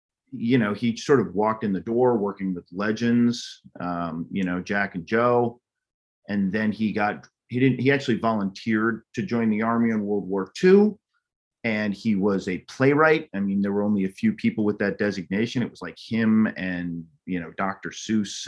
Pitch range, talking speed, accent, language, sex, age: 95-110 Hz, 195 wpm, American, English, male, 30-49